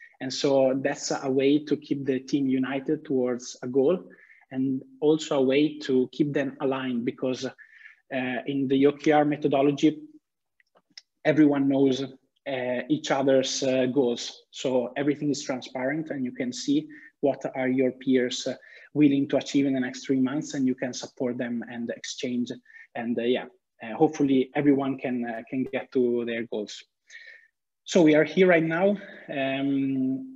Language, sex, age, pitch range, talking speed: Italian, male, 20-39, 130-150 Hz, 160 wpm